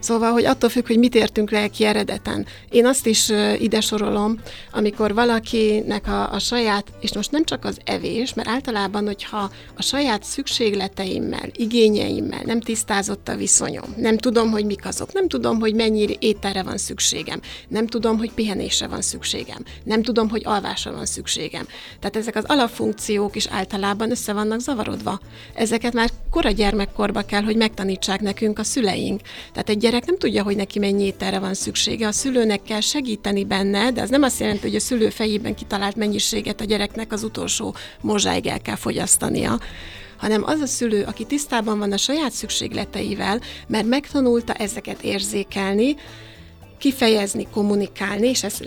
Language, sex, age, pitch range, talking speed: Hungarian, female, 30-49, 200-230 Hz, 165 wpm